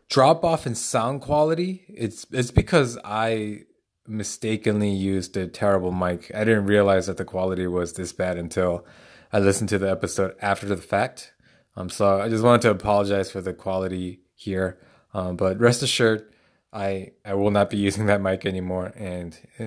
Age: 20-39